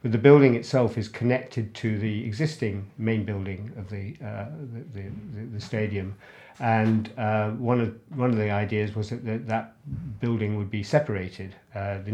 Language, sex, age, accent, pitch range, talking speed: English, male, 50-69, British, 100-115 Hz, 180 wpm